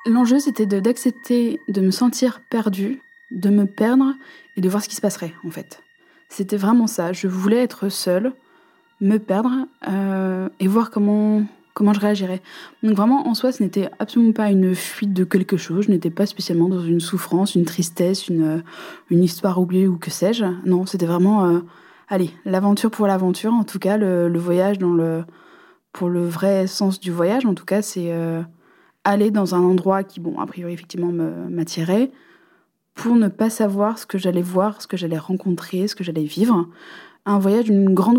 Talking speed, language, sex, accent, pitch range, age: 195 wpm, French, female, French, 180-225 Hz, 20-39